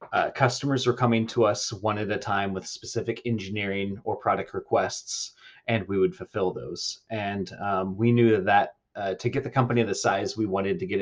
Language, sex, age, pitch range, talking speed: English, male, 30-49, 95-115 Hz, 200 wpm